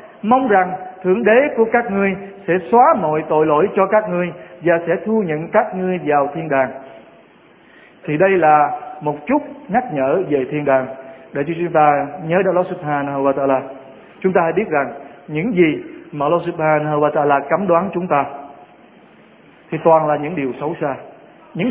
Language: Vietnamese